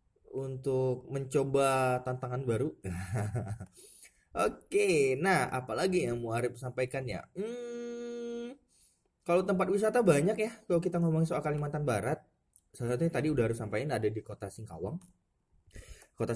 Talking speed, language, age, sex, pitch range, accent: 130 wpm, Indonesian, 20-39, male, 105-175 Hz, native